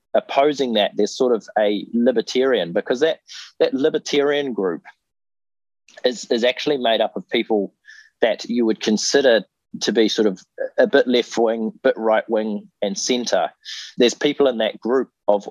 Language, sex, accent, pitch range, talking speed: English, male, Australian, 105-140 Hz, 165 wpm